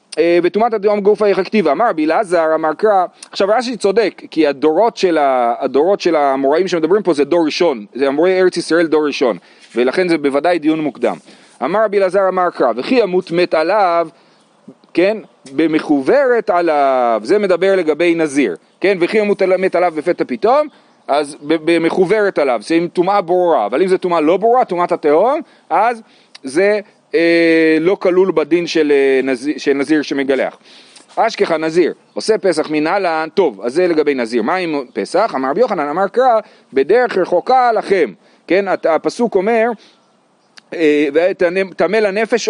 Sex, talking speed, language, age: male, 145 wpm, Hebrew, 40-59